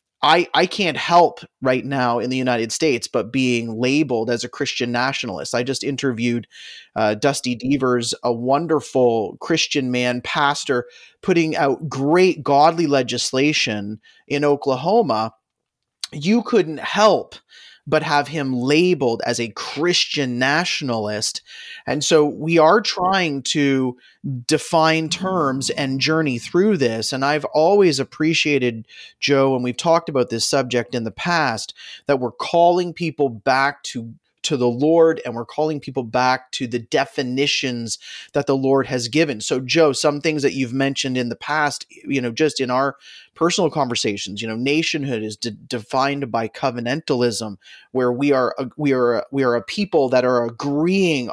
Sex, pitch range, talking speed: male, 125-155 Hz, 155 wpm